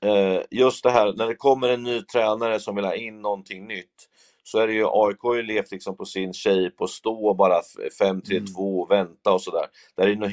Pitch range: 100-130 Hz